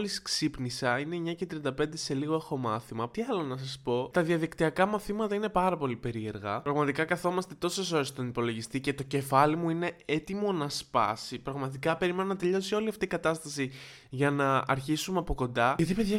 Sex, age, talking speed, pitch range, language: male, 20-39, 185 wpm, 120-180 Hz, Greek